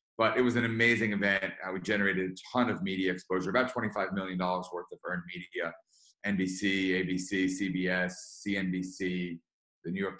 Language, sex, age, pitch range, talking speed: English, male, 30-49, 95-110 Hz, 160 wpm